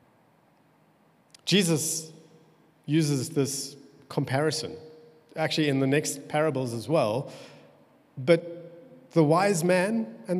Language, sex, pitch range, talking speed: English, male, 135-170 Hz, 90 wpm